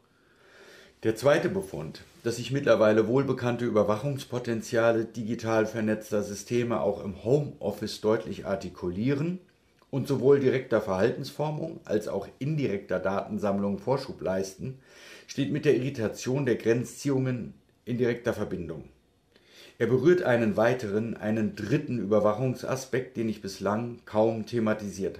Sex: male